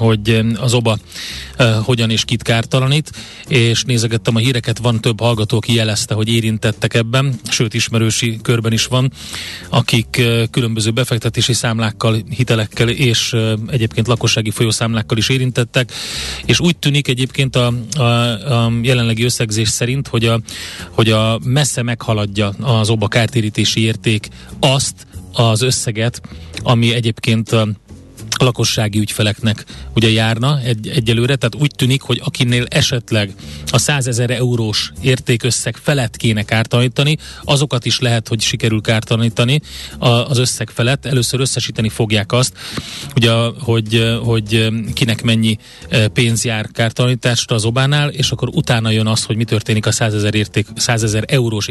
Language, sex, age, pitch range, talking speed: Hungarian, male, 30-49, 110-125 Hz, 140 wpm